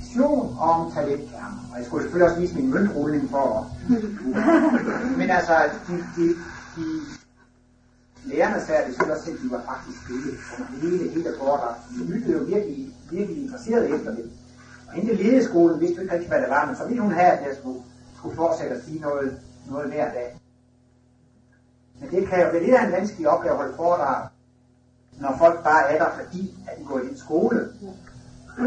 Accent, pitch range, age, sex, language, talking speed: native, 125-185 Hz, 60-79, male, Danish, 195 wpm